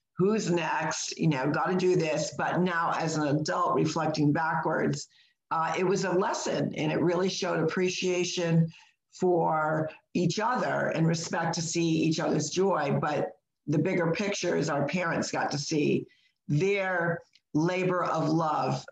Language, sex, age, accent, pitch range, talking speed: English, female, 50-69, American, 150-180 Hz, 155 wpm